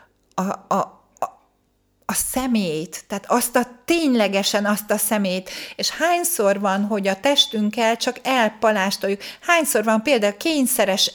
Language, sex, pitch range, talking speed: Hungarian, female, 200-265 Hz, 130 wpm